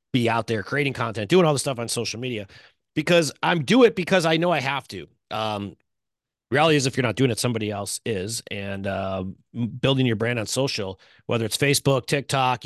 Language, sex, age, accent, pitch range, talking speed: English, male, 30-49, American, 110-155 Hz, 210 wpm